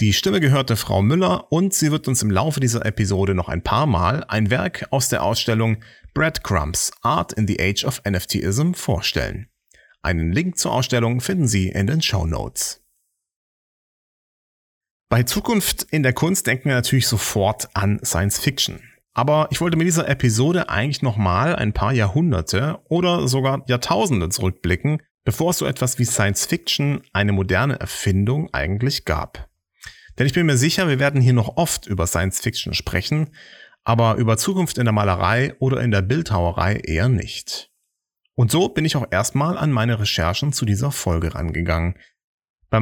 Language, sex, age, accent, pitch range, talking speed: German, male, 40-59, German, 100-145 Hz, 165 wpm